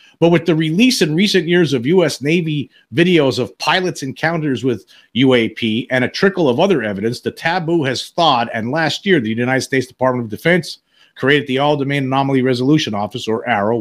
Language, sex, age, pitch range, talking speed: English, male, 50-69, 125-165 Hz, 185 wpm